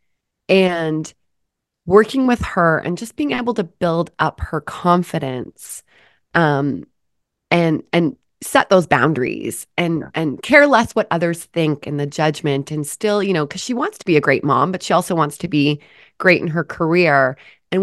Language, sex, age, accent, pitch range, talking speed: English, female, 20-39, American, 155-205 Hz, 175 wpm